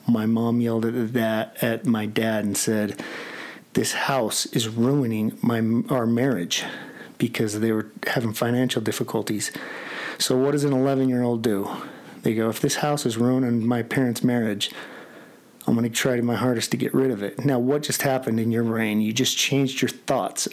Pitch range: 115-130 Hz